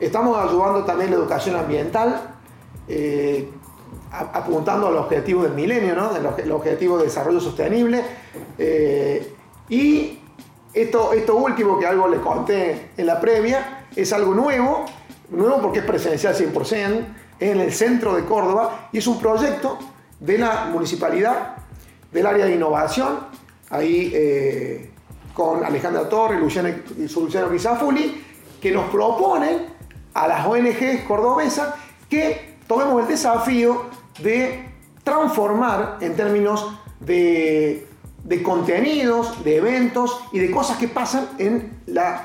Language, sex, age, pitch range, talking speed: Spanish, male, 40-59, 180-255 Hz, 130 wpm